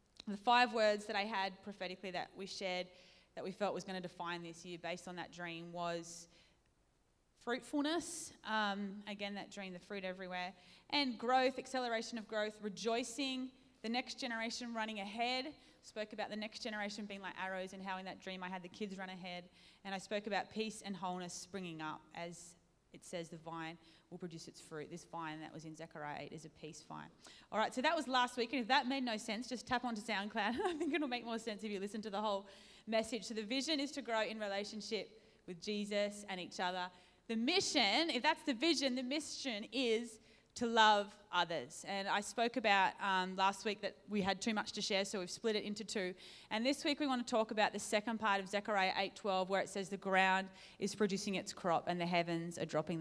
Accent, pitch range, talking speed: Australian, 180-225 Hz, 220 wpm